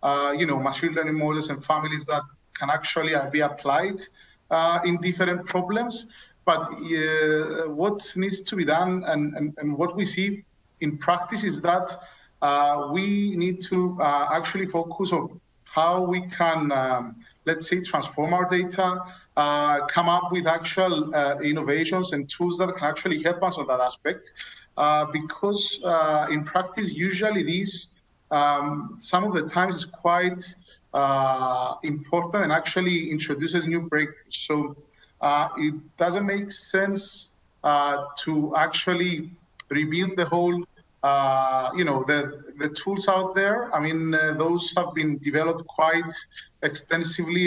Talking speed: 150 wpm